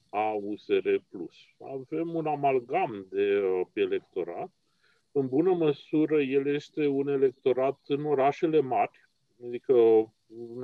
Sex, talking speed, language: male, 130 wpm, Romanian